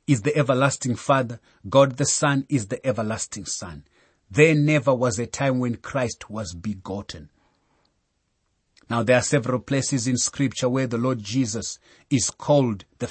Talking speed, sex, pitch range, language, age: 155 wpm, male, 105-140 Hz, English, 30-49